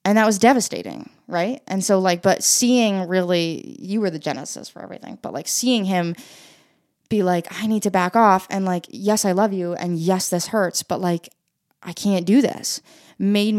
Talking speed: 200 wpm